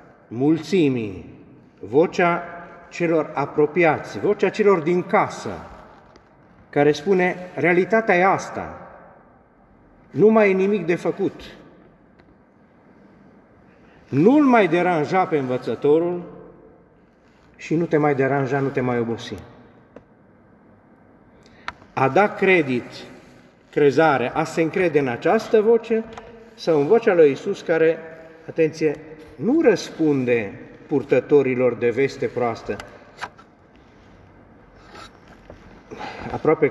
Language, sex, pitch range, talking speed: Romanian, male, 120-170 Hz, 95 wpm